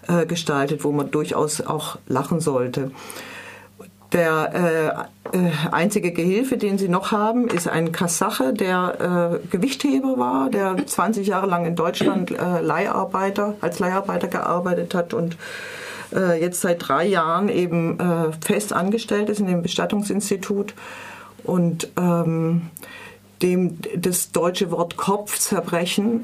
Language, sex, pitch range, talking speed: German, female, 155-185 Hz, 120 wpm